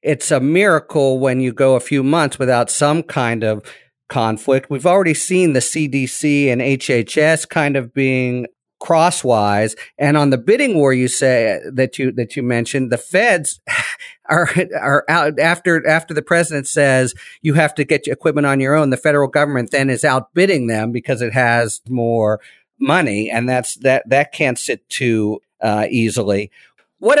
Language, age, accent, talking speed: English, 50-69, American, 180 wpm